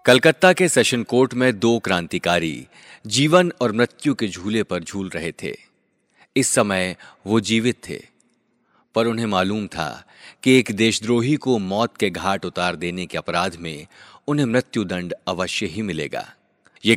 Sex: male